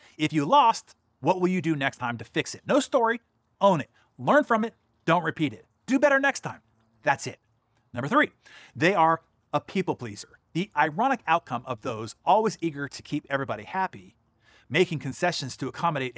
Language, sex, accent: English, male, American